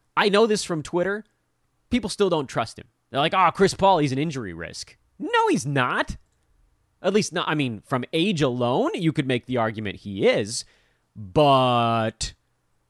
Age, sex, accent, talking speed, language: 30-49, male, American, 175 wpm, English